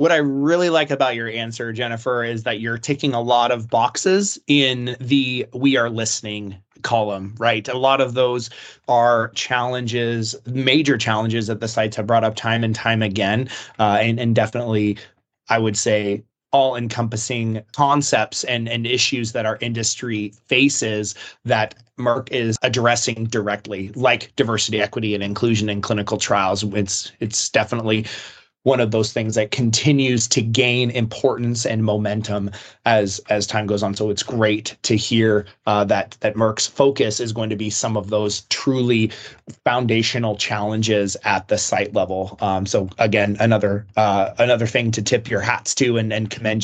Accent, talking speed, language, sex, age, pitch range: American, 165 wpm, English, male, 20-39, 105-125 Hz